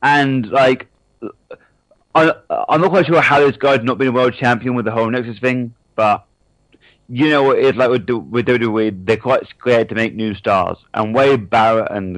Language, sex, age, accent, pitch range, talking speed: English, male, 30-49, British, 105-130 Hz, 200 wpm